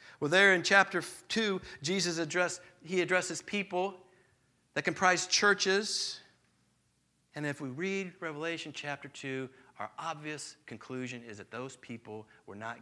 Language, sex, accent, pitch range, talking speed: English, male, American, 120-170 Hz, 135 wpm